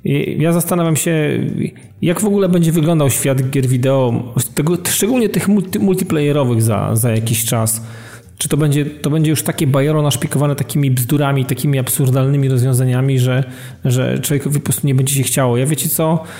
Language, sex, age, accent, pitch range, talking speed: Polish, male, 40-59, native, 130-160 Hz, 165 wpm